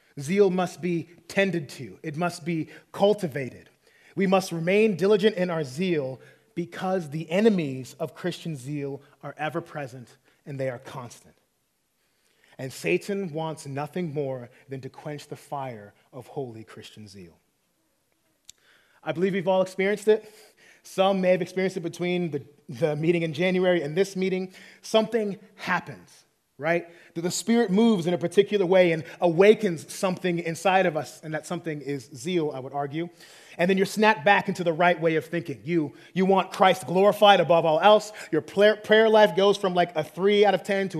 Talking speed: 175 wpm